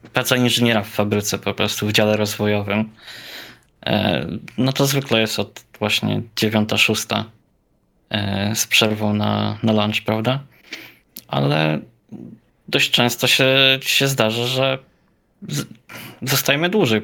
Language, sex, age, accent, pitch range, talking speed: Polish, male, 20-39, native, 105-120 Hz, 115 wpm